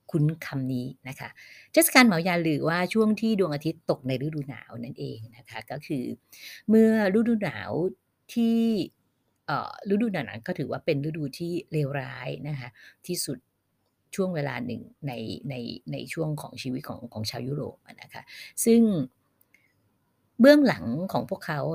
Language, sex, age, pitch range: Thai, female, 30-49, 130-180 Hz